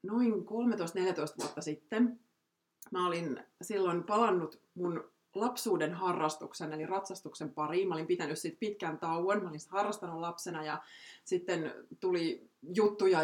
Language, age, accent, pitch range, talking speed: Finnish, 30-49, native, 155-205 Hz, 125 wpm